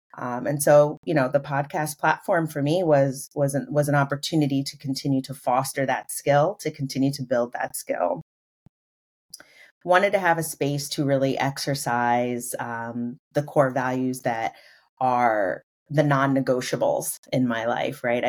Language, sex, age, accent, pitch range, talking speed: English, female, 30-49, American, 130-145 Hz, 155 wpm